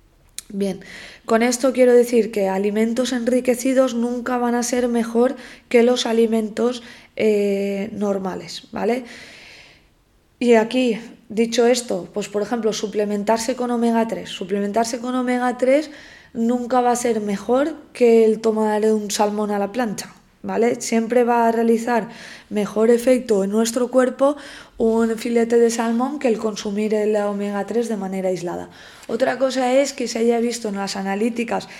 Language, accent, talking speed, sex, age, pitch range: Spanish, Spanish, 145 wpm, female, 20-39, 205-245 Hz